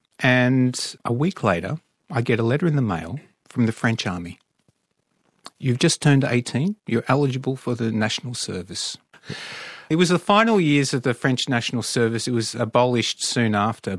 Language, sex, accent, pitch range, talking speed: English, male, Australian, 115-155 Hz, 170 wpm